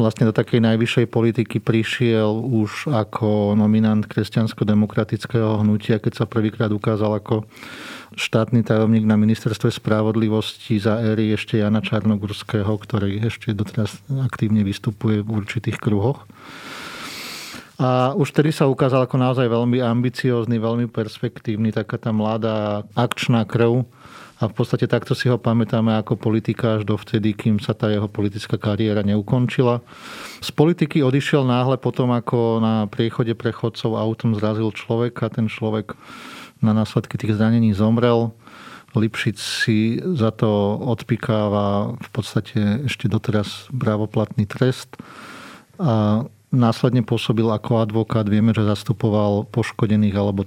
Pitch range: 110-120 Hz